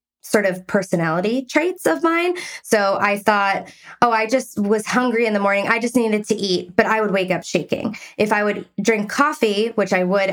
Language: English